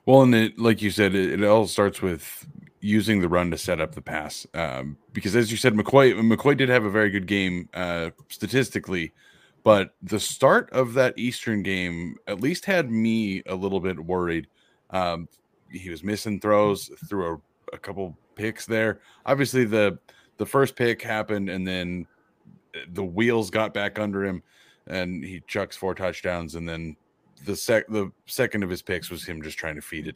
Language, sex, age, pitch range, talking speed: English, male, 30-49, 90-110 Hz, 190 wpm